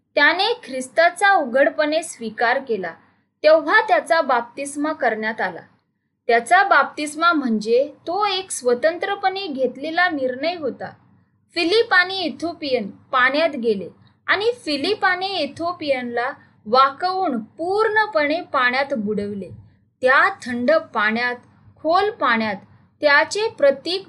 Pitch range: 245-340 Hz